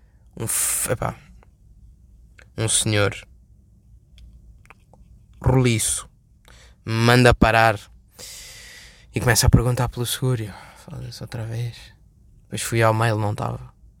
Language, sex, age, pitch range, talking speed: Portuguese, male, 20-39, 110-130 Hz, 105 wpm